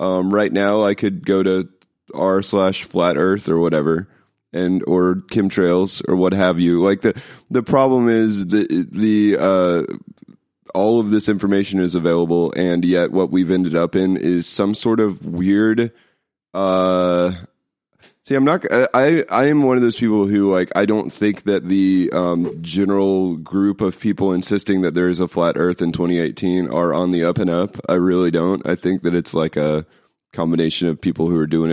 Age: 30-49